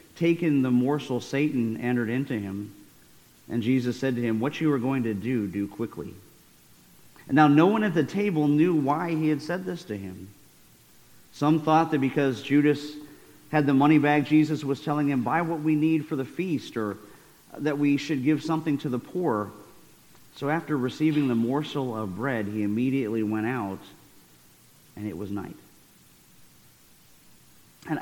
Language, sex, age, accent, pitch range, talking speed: English, male, 40-59, American, 120-160 Hz, 175 wpm